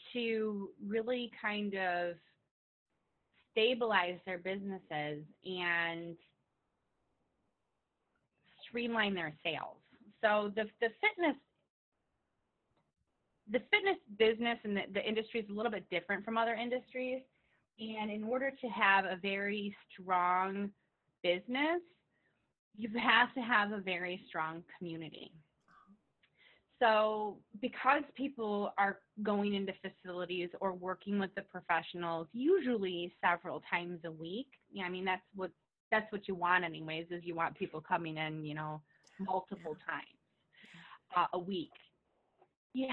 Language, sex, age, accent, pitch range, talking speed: English, female, 30-49, American, 175-230 Hz, 125 wpm